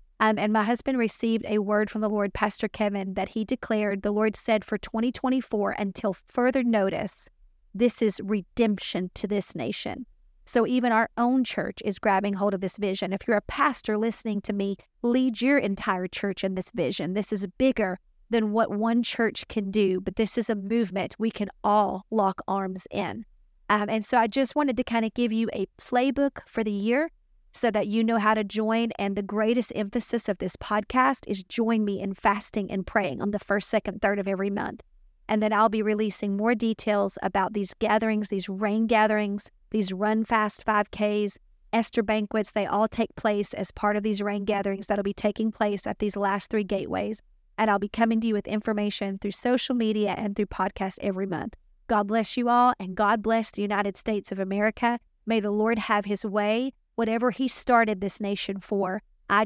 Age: 40-59